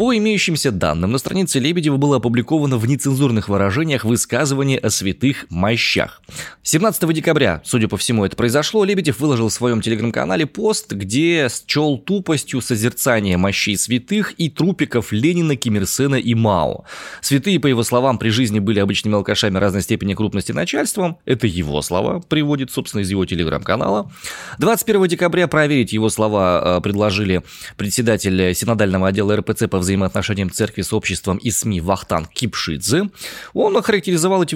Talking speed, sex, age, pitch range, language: 145 wpm, male, 20-39, 100-155 Hz, Russian